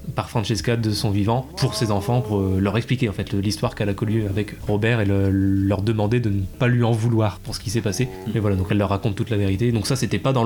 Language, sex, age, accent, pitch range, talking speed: French, male, 20-39, French, 110-125 Hz, 275 wpm